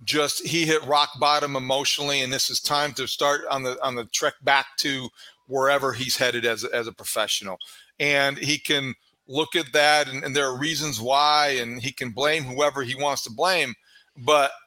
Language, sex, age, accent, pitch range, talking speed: English, male, 40-59, American, 135-160 Hz, 200 wpm